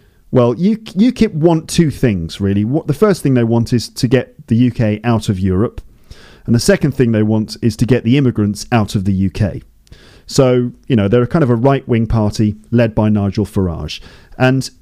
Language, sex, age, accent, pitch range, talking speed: English, male, 40-59, British, 105-130 Hz, 195 wpm